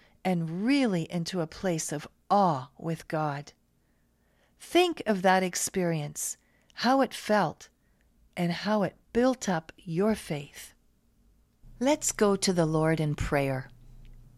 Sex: female